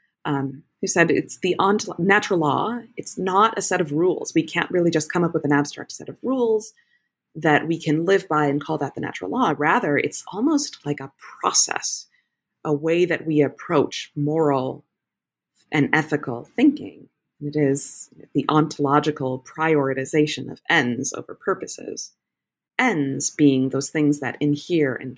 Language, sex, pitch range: English, female, 135-170 Hz